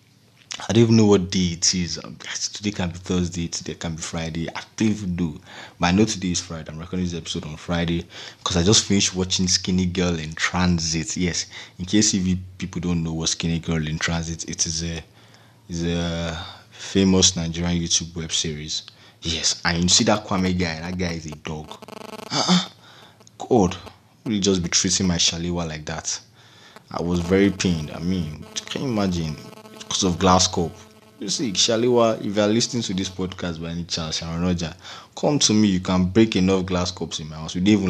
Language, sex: English, male